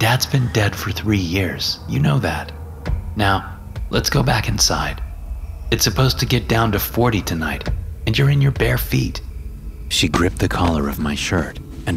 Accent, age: American, 30-49